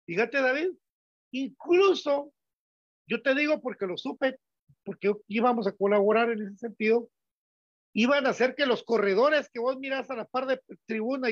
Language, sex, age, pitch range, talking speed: Spanish, male, 50-69, 205-265 Hz, 160 wpm